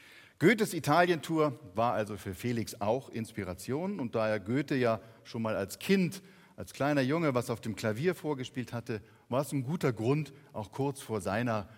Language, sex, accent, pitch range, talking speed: German, male, German, 110-140 Hz, 180 wpm